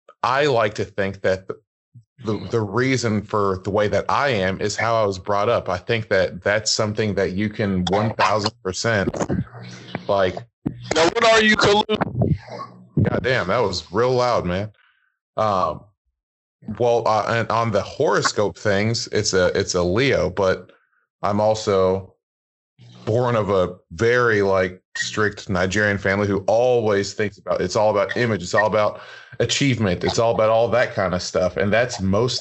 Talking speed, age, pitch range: 170 wpm, 20-39, 95-115 Hz